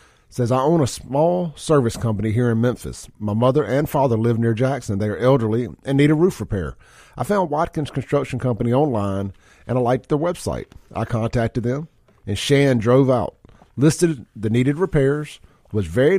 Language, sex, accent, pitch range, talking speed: English, male, American, 105-135 Hz, 180 wpm